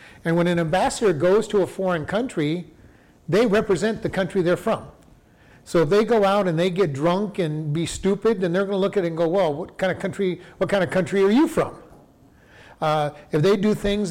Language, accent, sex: English, American, male